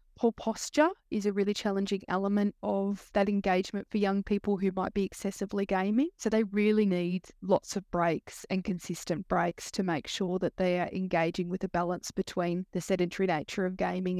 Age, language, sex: 20-39, English, female